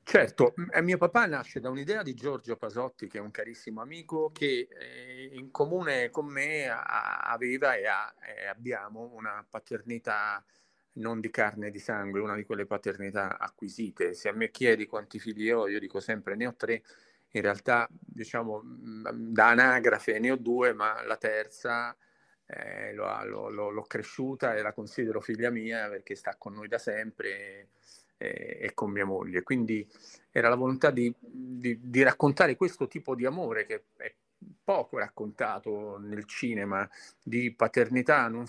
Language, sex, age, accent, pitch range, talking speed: Italian, male, 40-59, native, 110-145 Hz, 155 wpm